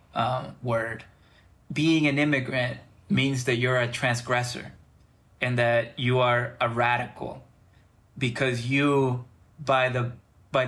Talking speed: 120 wpm